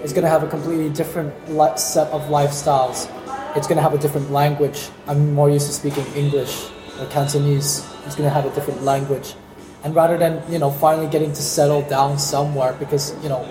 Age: 20-39